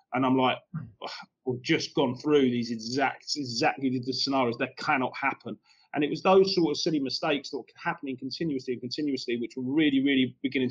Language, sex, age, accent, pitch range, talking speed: English, male, 30-49, British, 125-150 Hz, 200 wpm